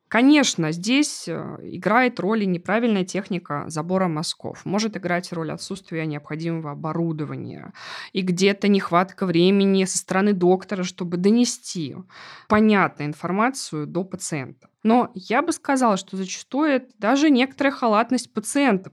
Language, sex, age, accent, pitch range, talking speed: Russian, female, 20-39, native, 180-240 Hz, 120 wpm